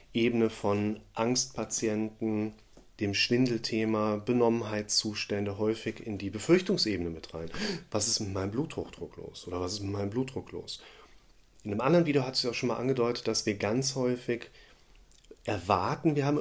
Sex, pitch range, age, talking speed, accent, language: male, 105-125 Hz, 30-49, 155 wpm, German, German